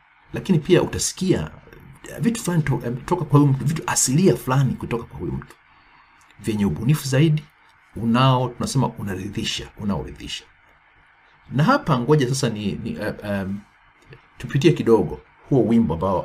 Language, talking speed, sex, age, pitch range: Swahili, 135 wpm, male, 50-69, 90-135 Hz